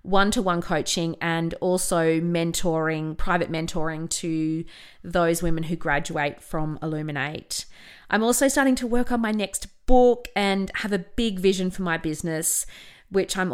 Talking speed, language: 145 wpm, English